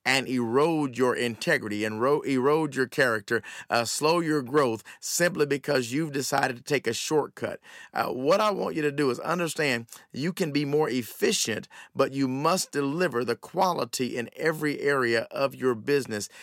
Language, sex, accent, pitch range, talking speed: English, male, American, 125-160 Hz, 170 wpm